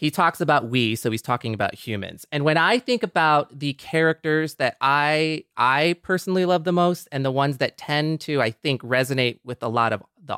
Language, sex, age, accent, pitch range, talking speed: English, male, 30-49, American, 130-170 Hz, 215 wpm